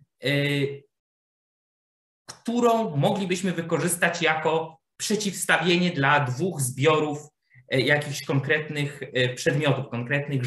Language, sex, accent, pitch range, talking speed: Polish, male, native, 140-180 Hz, 70 wpm